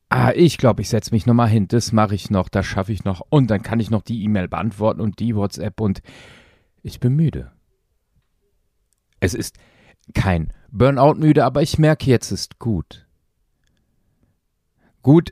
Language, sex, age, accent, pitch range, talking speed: German, male, 40-59, German, 80-110 Hz, 170 wpm